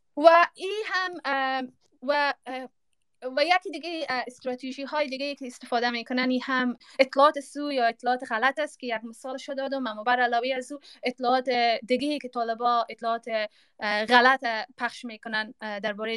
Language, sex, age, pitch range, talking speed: Persian, female, 20-39, 230-280 Hz, 140 wpm